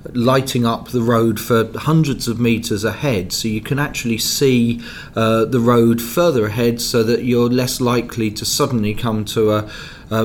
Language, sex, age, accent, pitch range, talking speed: English, male, 40-59, British, 115-135 Hz, 175 wpm